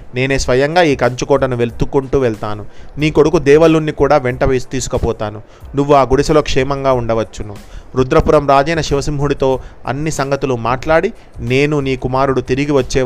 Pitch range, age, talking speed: 125-150 Hz, 30-49, 130 wpm